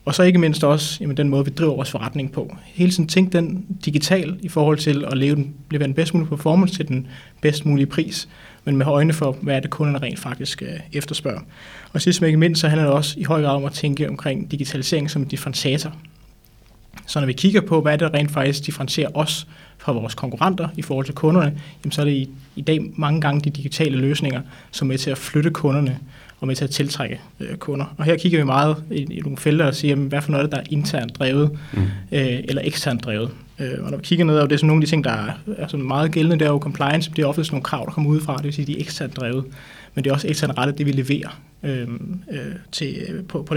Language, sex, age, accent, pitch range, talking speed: Danish, male, 20-39, native, 140-160 Hz, 240 wpm